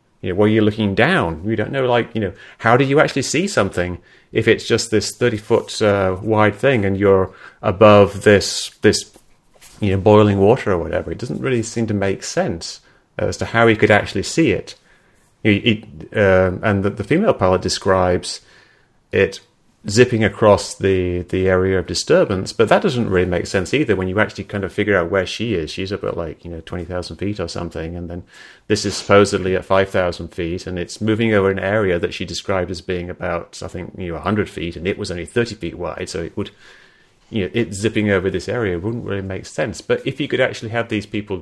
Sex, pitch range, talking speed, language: male, 95-110 Hz, 220 wpm, English